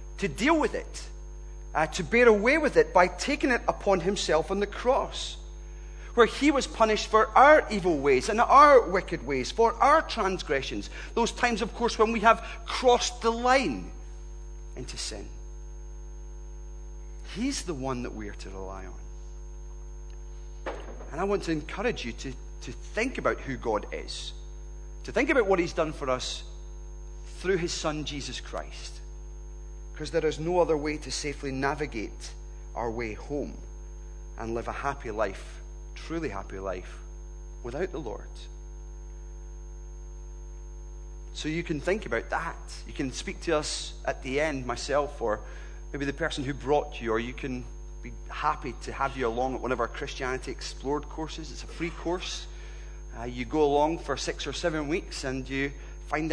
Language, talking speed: English, 165 wpm